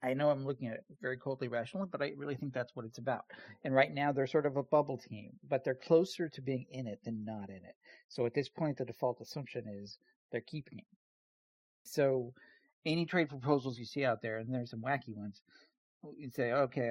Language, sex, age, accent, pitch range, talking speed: English, male, 50-69, American, 115-150 Hz, 225 wpm